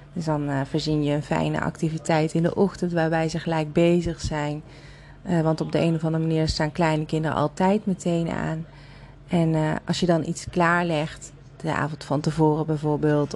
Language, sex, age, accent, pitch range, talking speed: Dutch, female, 30-49, Dutch, 155-170 Hz, 190 wpm